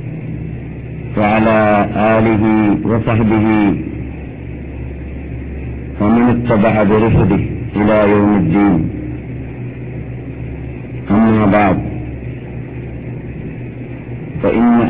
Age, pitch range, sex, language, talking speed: 50-69, 105-120 Hz, male, Malayalam, 50 wpm